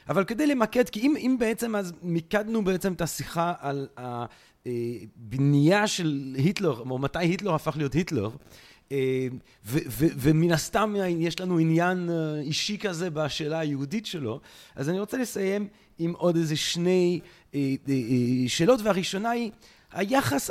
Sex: male